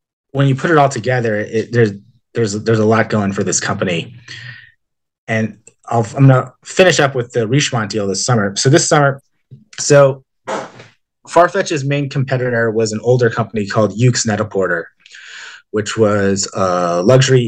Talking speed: 160 wpm